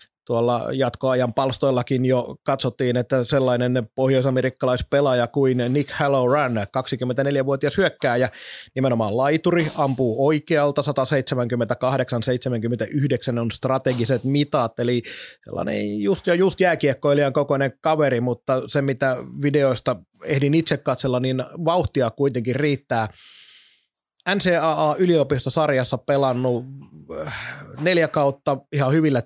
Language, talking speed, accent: Finnish, 95 wpm, native